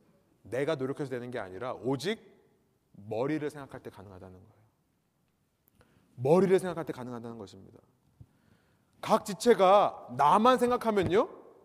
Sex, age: male, 30-49